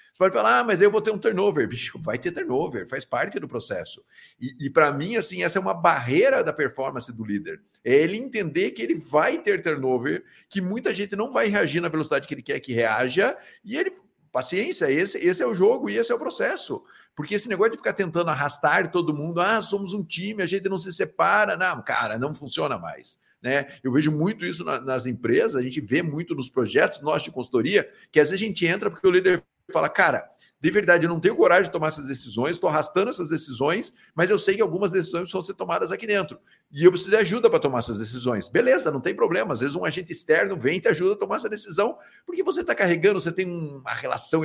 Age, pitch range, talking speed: 50-69, 150-220 Hz, 235 wpm